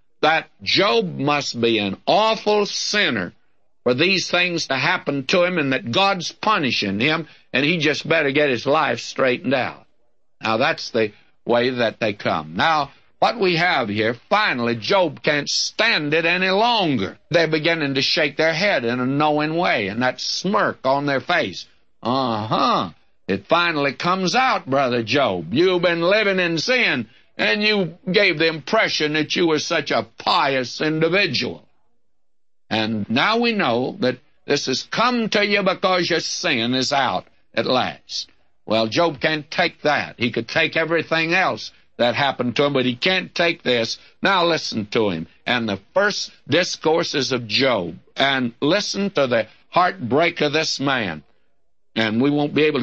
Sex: male